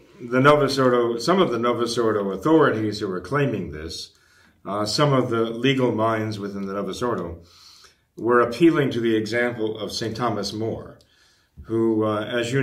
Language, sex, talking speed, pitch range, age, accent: English, male, 170 wpm, 110-125 Hz, 40-59, American